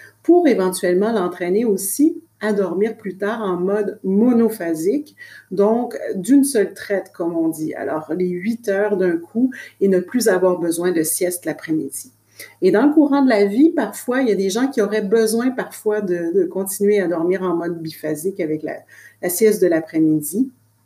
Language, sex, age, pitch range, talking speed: French, female, 50-69, 170-220 Hz, 180 wpm